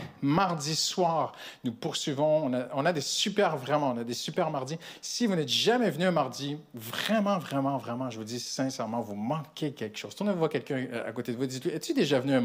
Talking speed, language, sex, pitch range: 235 wpm, French, male, 125-165 Hz